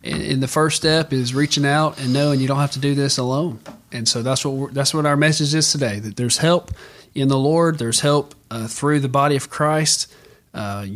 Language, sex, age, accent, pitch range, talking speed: English, male, 40-59, American, 125-150 Hz, 230 wpm